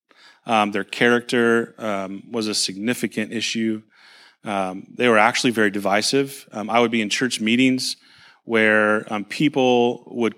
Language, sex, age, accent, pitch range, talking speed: English, male, 30-49, American, 105-125 Hz, 145 wpm